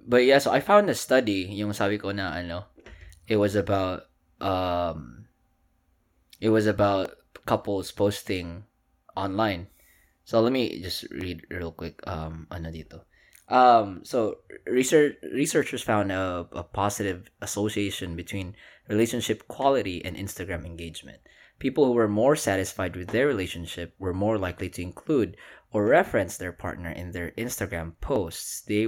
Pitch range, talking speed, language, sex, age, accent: 85-110 Hz, 145 wpm, Filipino, male, 20-39, native